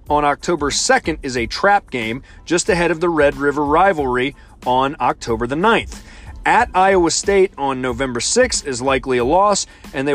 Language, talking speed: English, 175 wpm